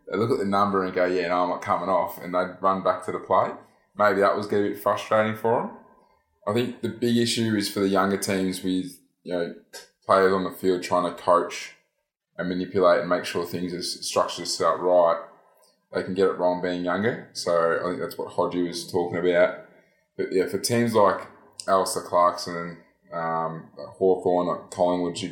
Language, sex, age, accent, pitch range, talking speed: English, male, 20-39, Australian, 90-95 Hz, 205 wpm